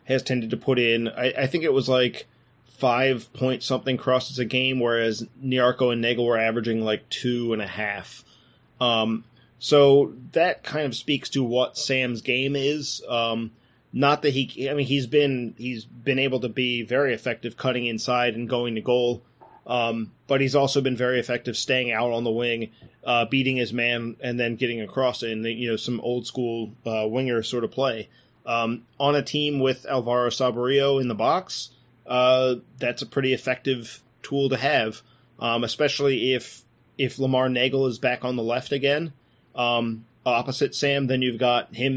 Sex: male